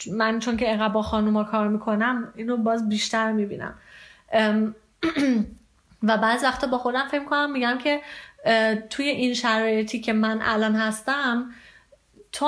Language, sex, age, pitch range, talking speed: Persian, female, 30-49, 215-250 Hz, 135 wpm